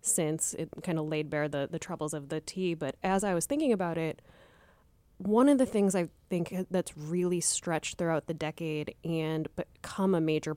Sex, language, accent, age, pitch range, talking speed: female, English, American, 20-39, 150-180 Hz, 200 wpm